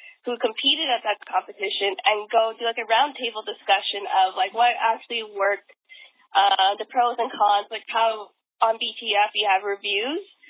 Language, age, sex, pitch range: English, 10-29, female, 200-245 Hz